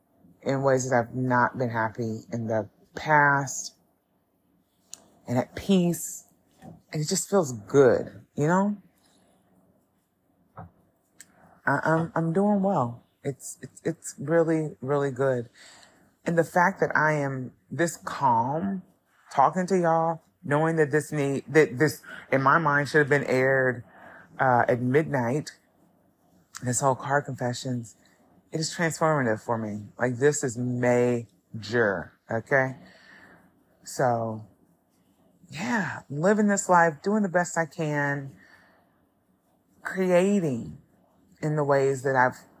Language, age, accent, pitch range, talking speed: English, 30-49, American, 125-165 Hz, 125 wpm